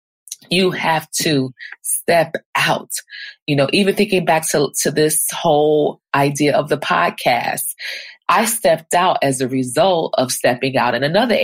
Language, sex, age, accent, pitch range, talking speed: English, female, 30-49, American, 135-175 Hz, 150 wpm